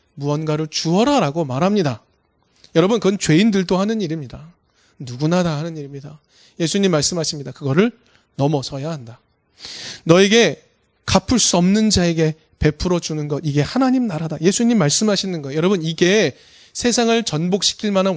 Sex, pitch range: male, 145-200 Hz